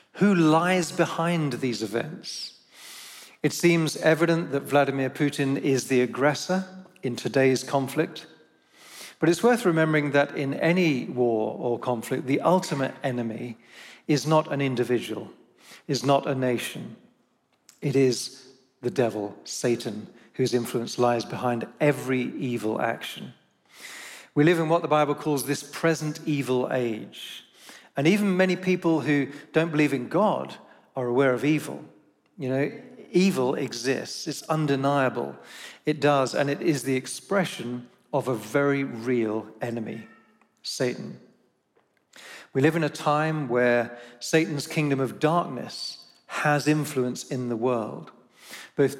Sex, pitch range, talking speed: male, 125-155 Hz, 135 wpm